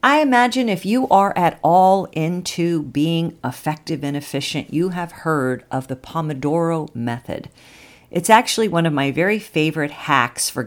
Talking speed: 155 wpm